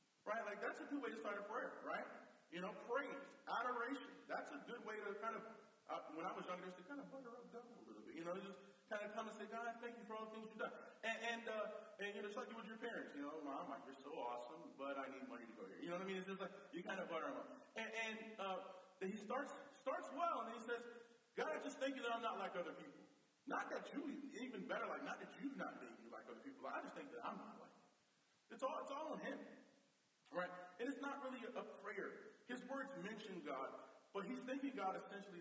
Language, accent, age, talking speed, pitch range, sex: English, American, 30-49, 280 wpm, 180-240 Hz, male